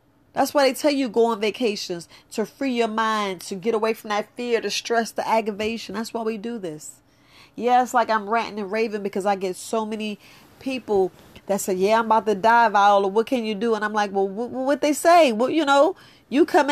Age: 40-59